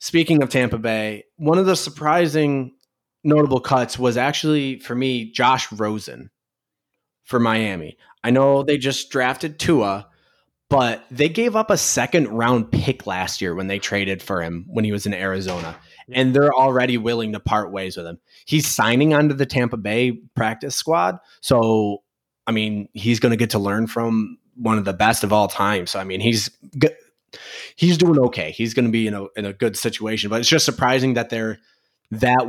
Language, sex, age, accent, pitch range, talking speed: English, male, 20-39, American, 105-130 Hz, 190 wpm